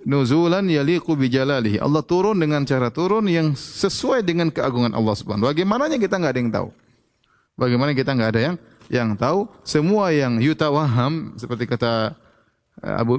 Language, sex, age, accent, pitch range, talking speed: Indonesian, male, 30-49, native, 115-160 Hz, 150 wpm